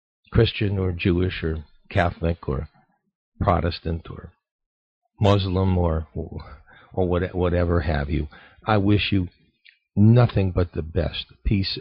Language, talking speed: English, 120 wpm